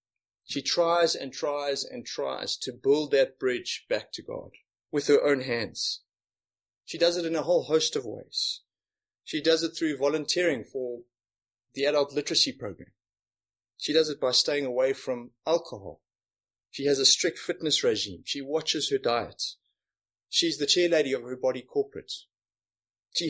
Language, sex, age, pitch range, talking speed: English, male, 30-49, 105-165 Hz, 160 wpm